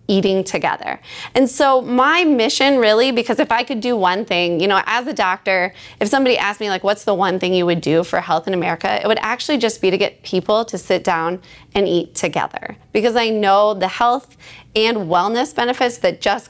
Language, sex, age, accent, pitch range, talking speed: English, female, 20-39, American, 190-260 Hz, 215 wpm